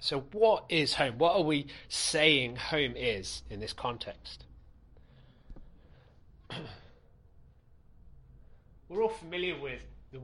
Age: 30-49